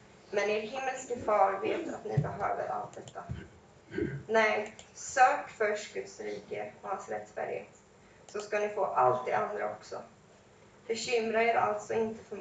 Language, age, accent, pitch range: Swedish, 20-39, native, 190-230 Hz